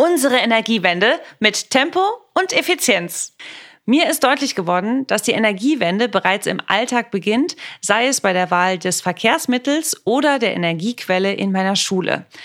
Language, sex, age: German, female, 30-49